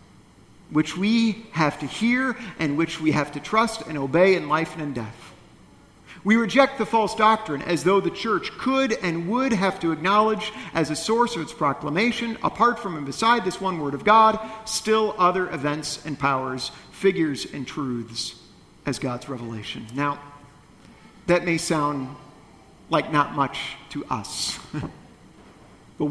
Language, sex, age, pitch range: English, male, 50-69, 145-195 Hz